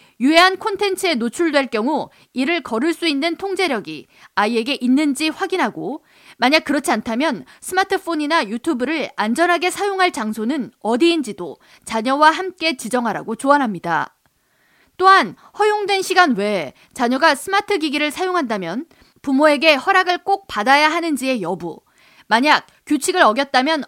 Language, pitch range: Korean, 240-335 Hz